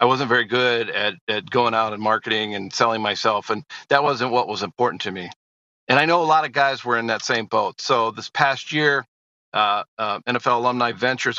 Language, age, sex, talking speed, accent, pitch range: English, 50-69, male, 220 wpm, American, 120-135 Hz